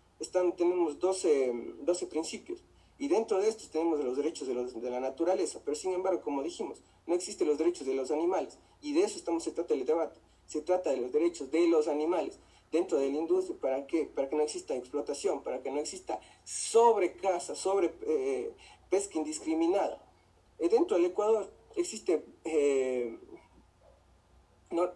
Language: Spanish